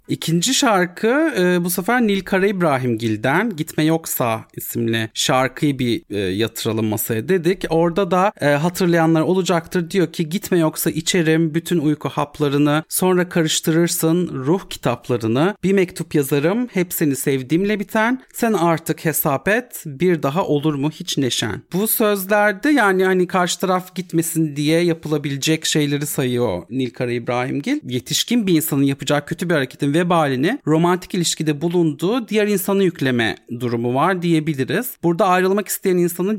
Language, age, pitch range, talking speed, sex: Turkish, 40-59, 140-185 Hz, 135 wpm, male